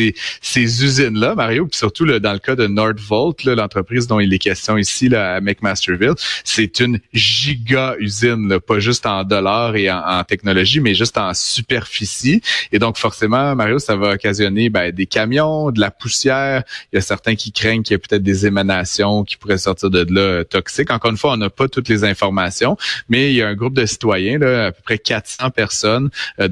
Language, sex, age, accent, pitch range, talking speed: French, male, 30-49, Canadian, 95-115 Hz, 215 wpm